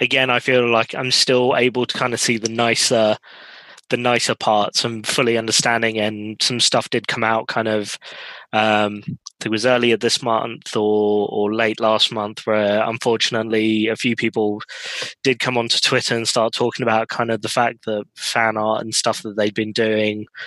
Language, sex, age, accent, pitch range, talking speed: English, male, 20-39, British, 110-120 Hz, 190 wpm